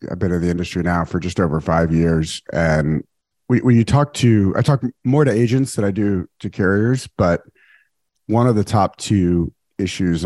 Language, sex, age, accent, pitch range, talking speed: English, male, 40-59, American, 80-100 Hz, 200 wpm